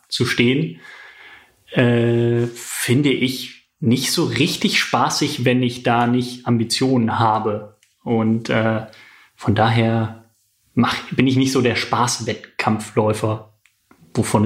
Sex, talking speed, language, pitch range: male, 110 wpm, German, 110-125 Hz